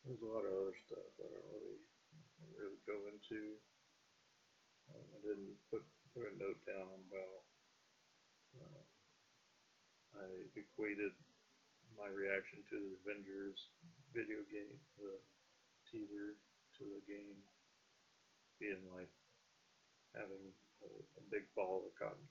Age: 40-59